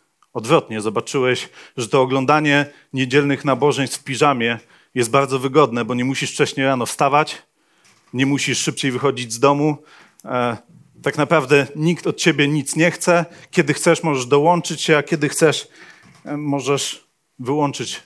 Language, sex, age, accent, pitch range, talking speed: Polish, male, 40-59, native, 125-145 Hz, 140 wpm